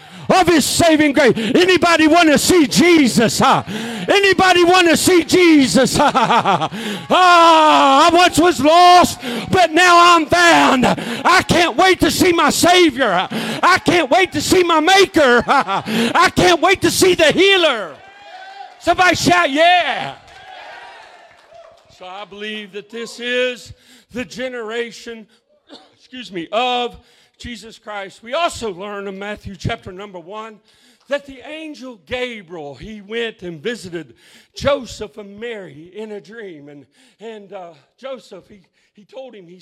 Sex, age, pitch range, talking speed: male, 50-69, 210-320 Hz, 140 wpm